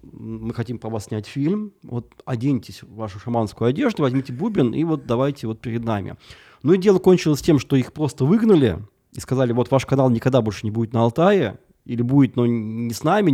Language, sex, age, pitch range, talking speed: Russian, male, 20-39, 110-140 Hz, 205 wpm